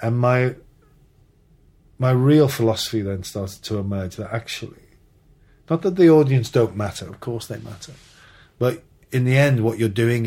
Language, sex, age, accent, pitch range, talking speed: English, male, 40-59, British, 100-120 Hz, 165 wpm